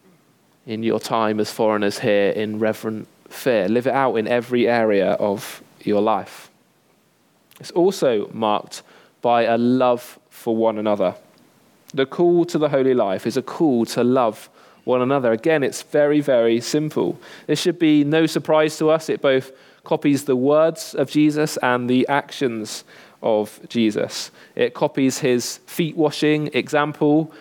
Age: 20-39